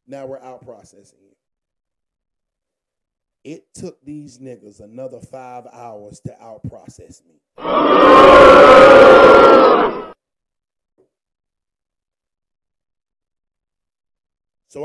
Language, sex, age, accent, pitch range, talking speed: English, male, 40-59, American, 140-190 Hz, 70 wpm